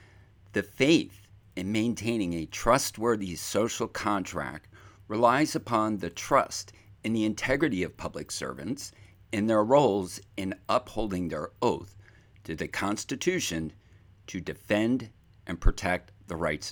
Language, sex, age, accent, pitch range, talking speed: English, male, 50-69, American, 90-110 Hz, 120 wpm